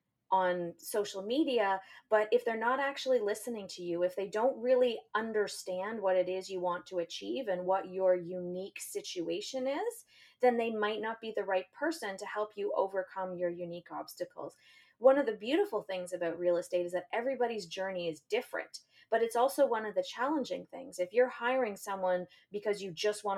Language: English